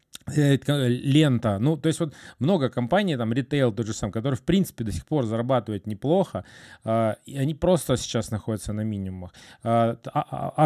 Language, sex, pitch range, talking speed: Russian, male, 115-140 Hz, 170 wpm